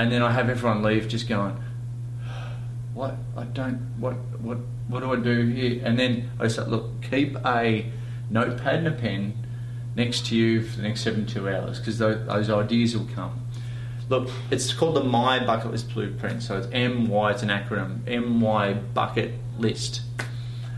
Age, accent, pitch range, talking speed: 30-49, Australian, 110-120 Hz, 180 wpm